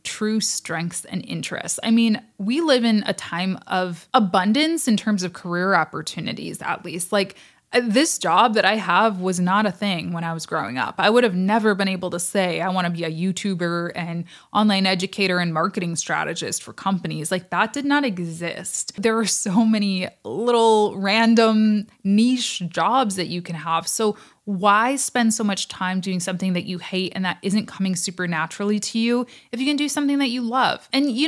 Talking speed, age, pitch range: 200 wpm, 20-39, 180-230 Hz